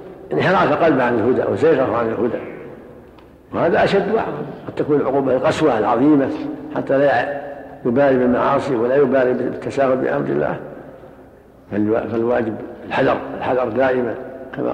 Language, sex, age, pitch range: Arabic, male, 60-79, 125-135 Hz